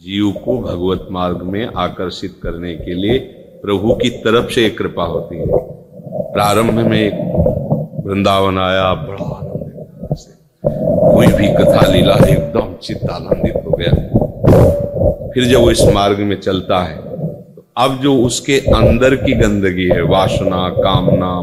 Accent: native